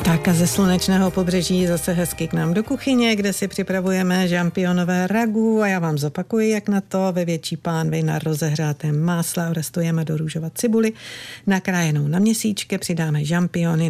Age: 50-69